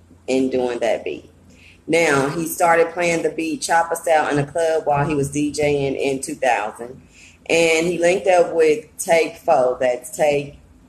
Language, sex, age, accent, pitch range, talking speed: English, female, 20-39, American, 135-165 Hz, 165 wpm